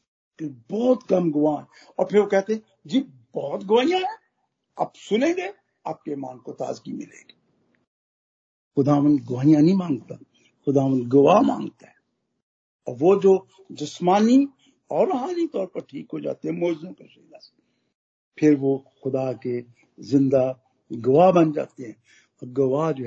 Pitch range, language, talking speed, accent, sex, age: 135-195 Hz, Hindi, 60 wpm, native, male, 60-79